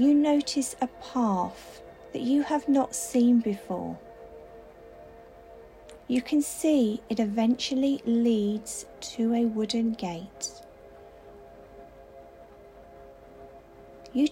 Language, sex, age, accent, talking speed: English, female, 40-59, British, 90 wpm